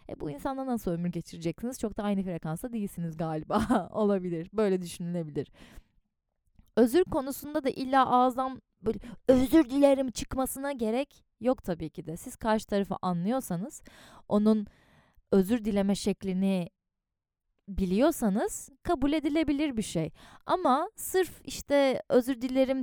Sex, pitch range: female, 180-260 Hz